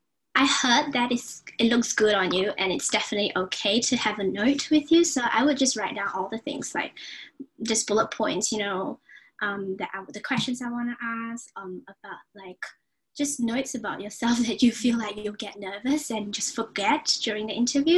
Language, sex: English, female